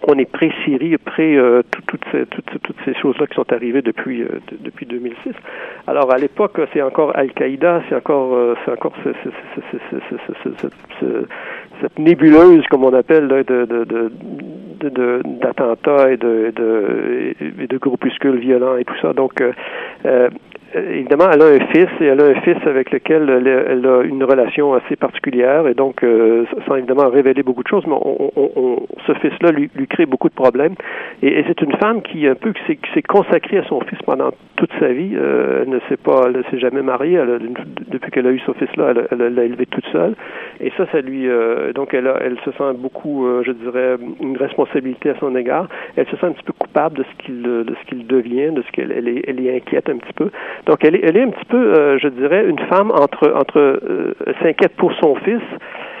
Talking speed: 215 wpm